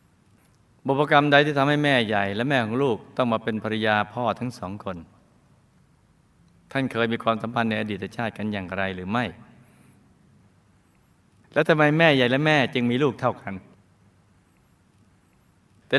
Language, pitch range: Thai, 105-135 Hz